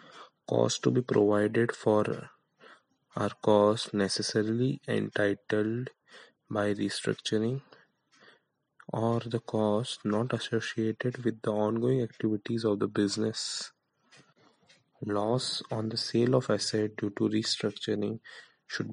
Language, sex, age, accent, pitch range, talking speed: Hindi, male, 20-39, native, 105-115 Hz, 105 wpm